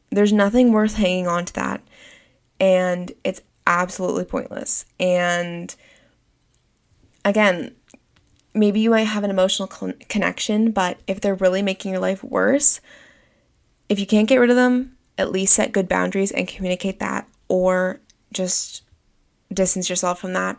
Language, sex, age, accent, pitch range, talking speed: English, female, 20-39, American, 180-210 Hz, 145 wpm